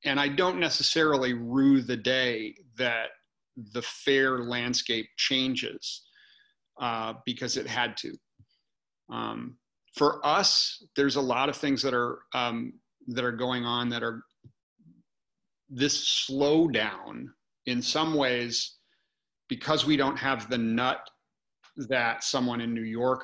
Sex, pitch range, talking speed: male, 120-140 Hz, 130 wpm